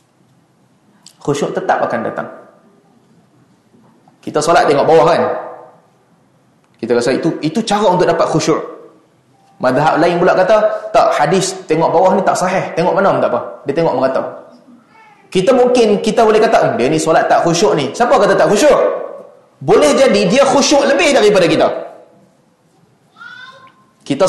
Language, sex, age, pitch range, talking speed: Malay, male, 20-39, 160-250 Hz, 145 wpm